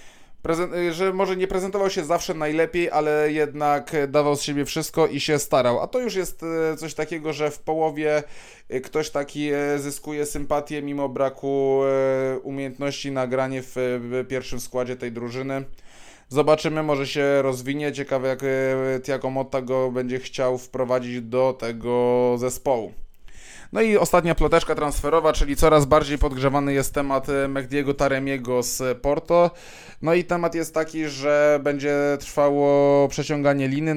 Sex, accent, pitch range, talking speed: male, native, 135-150 Hz, 140 wpm